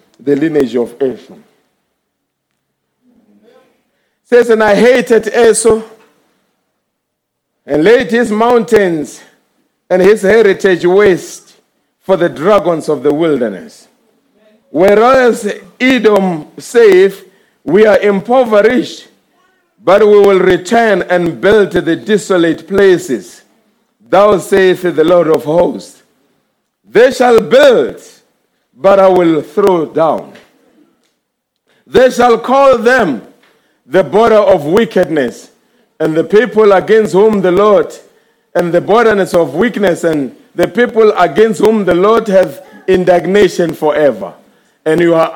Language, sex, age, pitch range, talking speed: English, male, 50-69, 175-225 Hz, 110 wpm